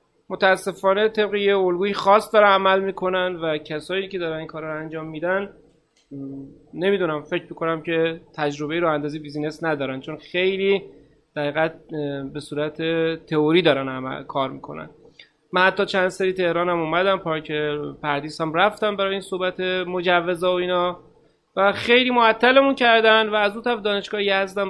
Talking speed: 150 wpm